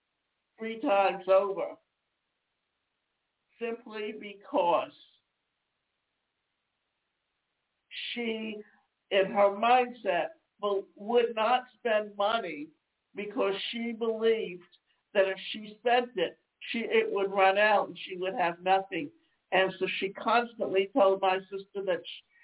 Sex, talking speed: male, 110 wpm